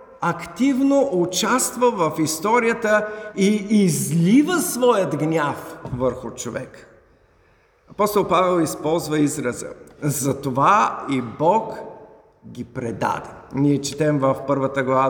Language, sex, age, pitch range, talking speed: Bulgarian, male, 50-69, 140-225 Hz, 95 wpm